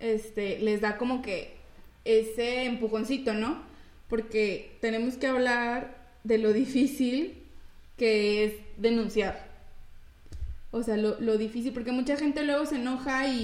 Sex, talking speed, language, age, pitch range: female, 135 wpm, Spanish, 20-39, 210-250 Hz